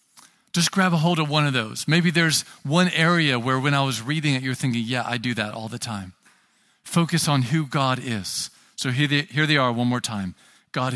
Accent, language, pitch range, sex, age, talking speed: American, English, 115-160 Hz, male, 40-59, 225 wpm